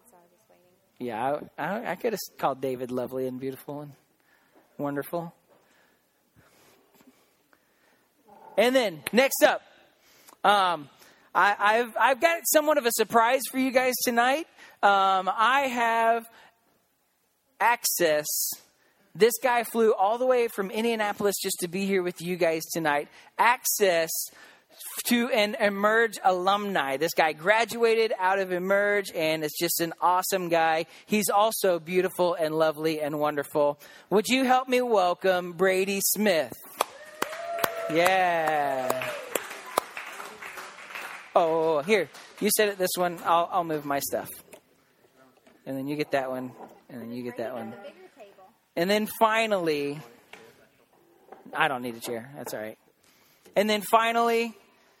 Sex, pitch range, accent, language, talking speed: male, 160-230 Hz, American, English, 130 wpm